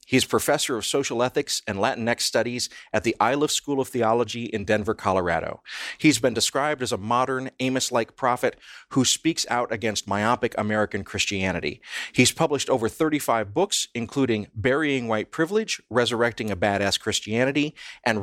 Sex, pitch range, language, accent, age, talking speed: male, 105-125 Hz, English, American, 40-59, 150 wpm